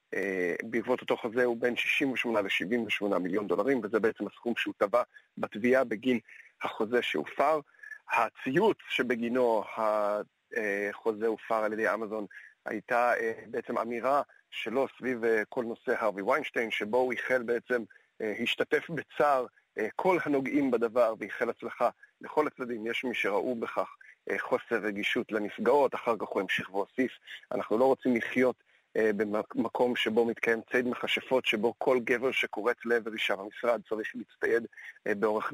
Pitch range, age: 110-130 Hz, 40-59